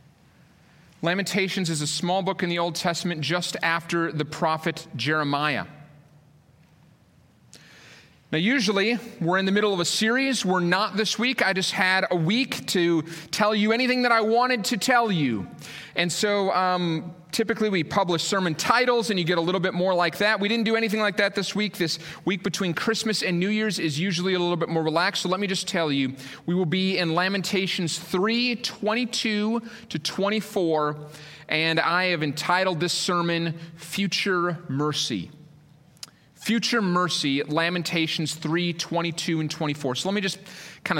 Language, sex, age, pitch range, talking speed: English, male, 30-49, 155-200 Hz, 170 wpm